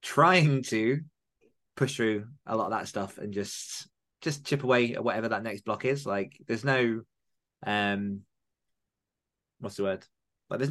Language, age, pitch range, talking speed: English, 20-39, 100-125 Hz, 170 wpm